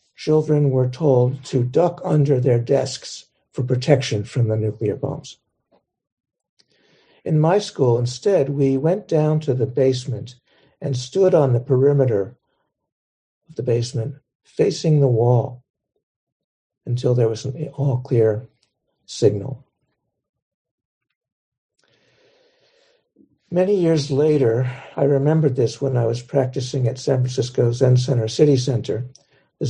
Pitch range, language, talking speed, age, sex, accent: 115-140 Hz, English, 120 wpm, 60-79, male, American